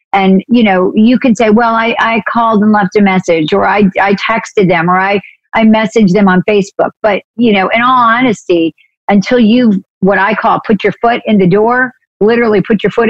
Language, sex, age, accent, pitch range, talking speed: English, female, 50-69, American, 180-225 Hz, 215 wpm